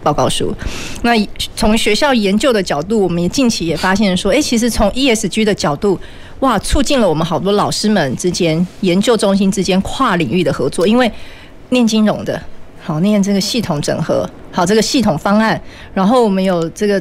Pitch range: 180-235 Hz